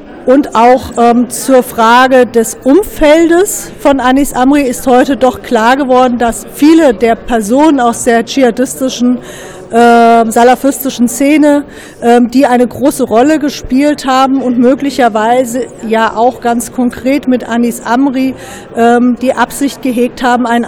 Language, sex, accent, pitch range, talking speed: German, female, German, 230-260 Hz, 135 wpm